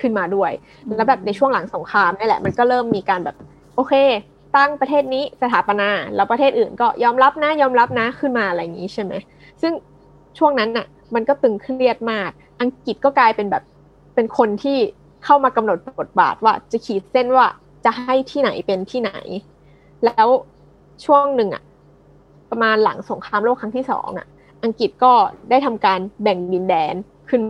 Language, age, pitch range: Thai, 20-39, 195-260 Hz